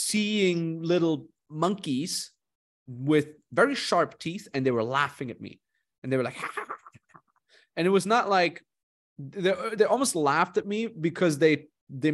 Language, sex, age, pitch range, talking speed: English, male, 30-49, 130-170 Hz, 155 wpm